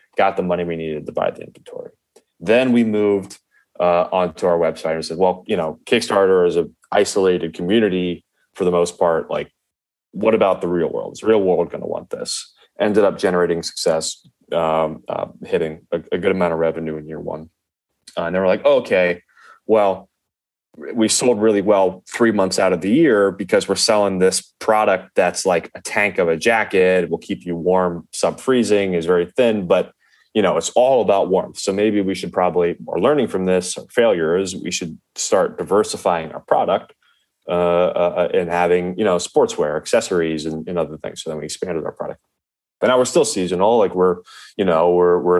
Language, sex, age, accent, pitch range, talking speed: English, male, 20-39, American, 85-100 Hz, 200 wpm